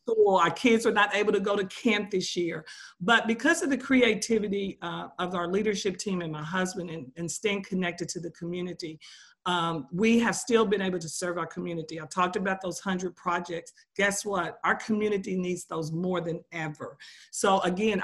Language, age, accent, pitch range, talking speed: English, 50-69, American, 170-215 Hz, 195 wpm